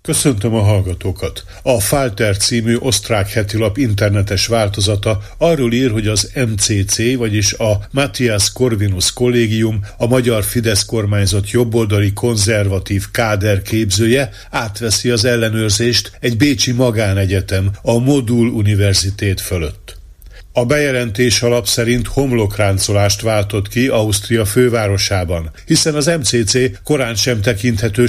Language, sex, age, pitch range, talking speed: Hungarian, male, 50-69, 100-120 Hz, 115 wpm